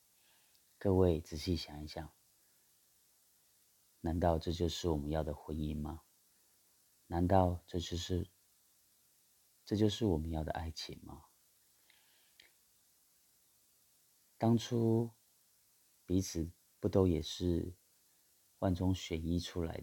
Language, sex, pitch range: Chinese, male, 80-95 Hz